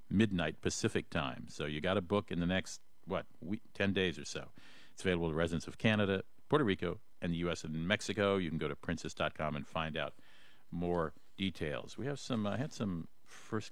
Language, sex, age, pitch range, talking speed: English, male, 50-69, 90-110 Hz, 225 wpm